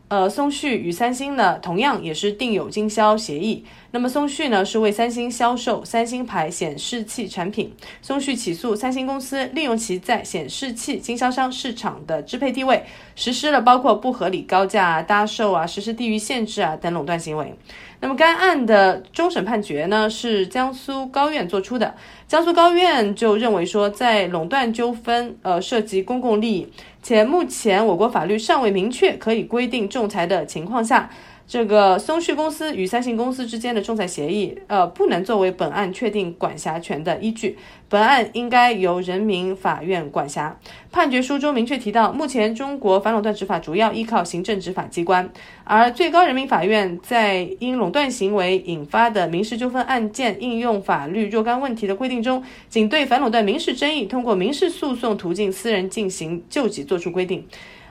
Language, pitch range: Chinese, 195-250 Hz